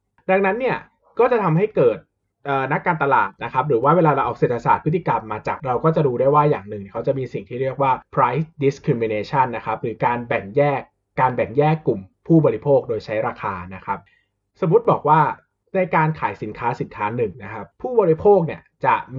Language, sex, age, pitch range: Thai, male, 20-39, 115-160 Hz